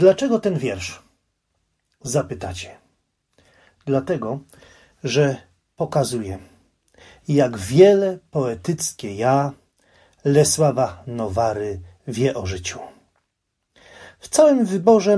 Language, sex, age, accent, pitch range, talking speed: Polish, male, 40-59, native, 105-165 Hz, 75 wpm